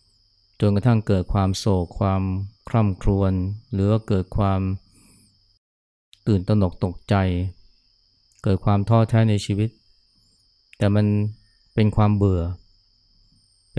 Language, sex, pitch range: Thai, male, 95-105 Hz